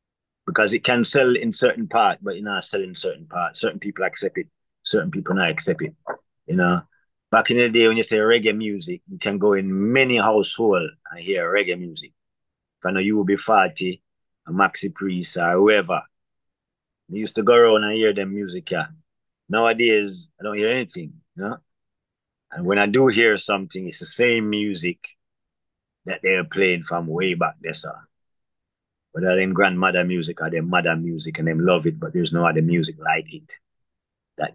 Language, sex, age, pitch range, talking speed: English, male, 30-49, 95-150 Hz, 190 wpm